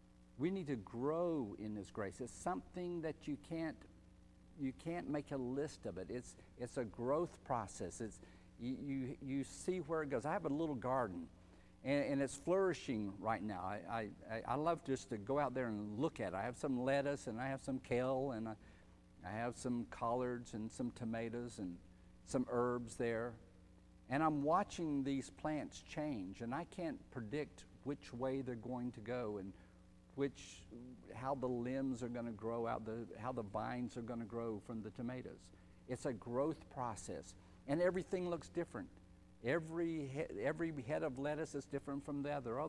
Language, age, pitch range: English, 50-69, 105-145 Hz